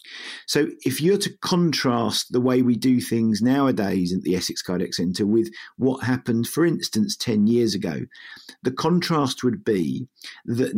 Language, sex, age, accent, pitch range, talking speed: English, male, 50-69, British, 100-130 Hz, 160 wpm